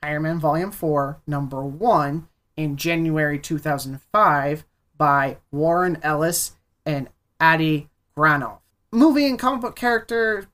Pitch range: 145-175 Hz